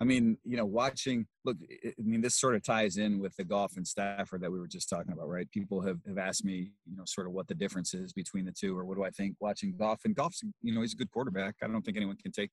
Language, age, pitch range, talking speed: English, 30-49, 95-110 Hz, 295 wpm